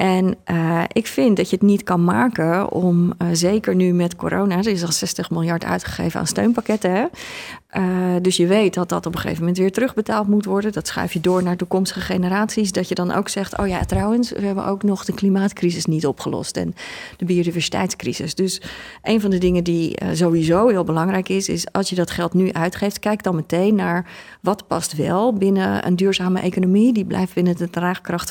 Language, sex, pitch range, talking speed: Dutch, female, 170-195 Hz, 210 wpm